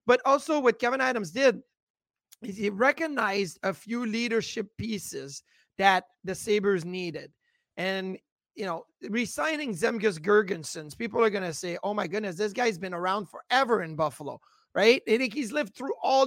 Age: 30-49